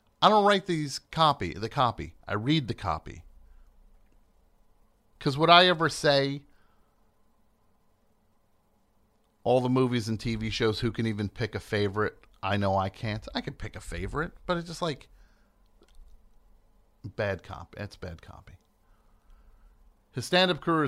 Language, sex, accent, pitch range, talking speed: English, male, American, 100-135 Hz, 140 wpm